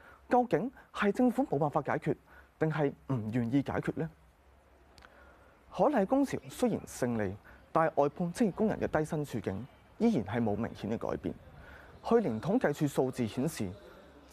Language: Chinese